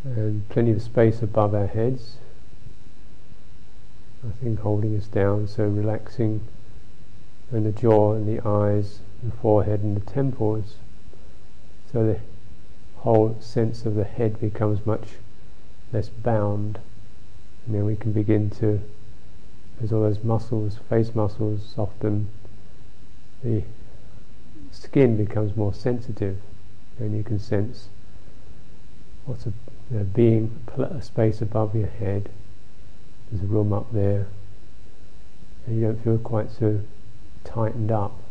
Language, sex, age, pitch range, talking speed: English, male, 50-69, 100-115 Hz, 125 wpm